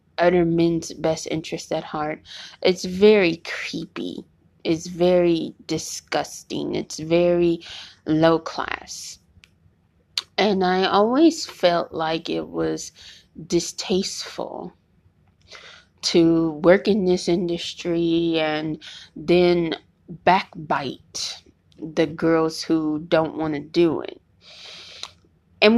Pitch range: 160-180 Hz